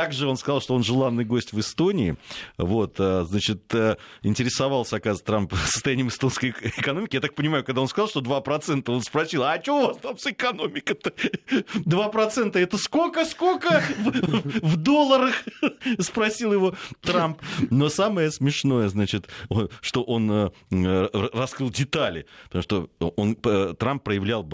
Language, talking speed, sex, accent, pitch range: Russian, 140 wpm, male, native, 100-155 Hz